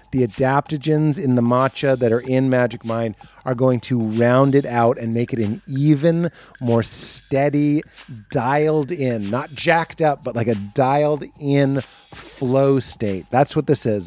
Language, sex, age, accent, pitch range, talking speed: English, male, 30-49, American, 120-150 Hz, 165 wpm